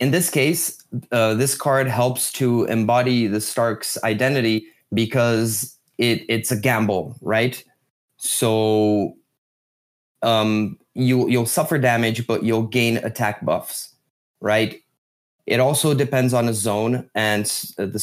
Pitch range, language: 110-130 Hz, English